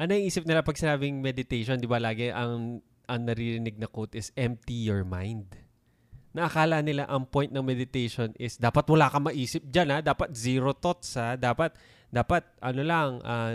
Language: Filipino